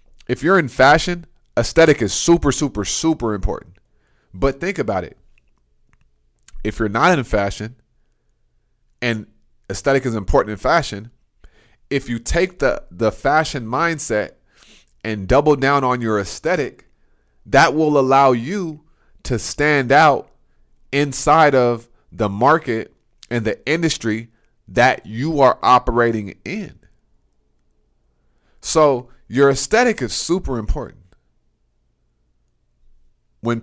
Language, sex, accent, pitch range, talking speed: English, male, American, 110-145 Hz, 115 wpm